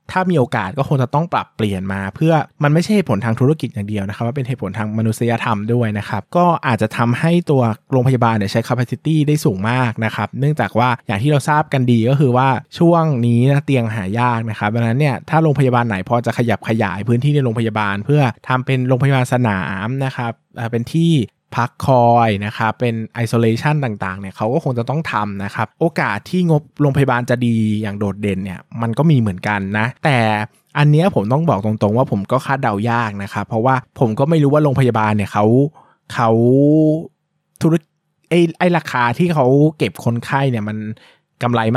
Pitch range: 110-145 Hz